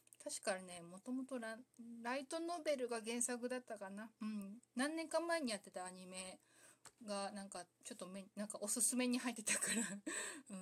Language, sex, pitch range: Japanese, female, 185-250 Hz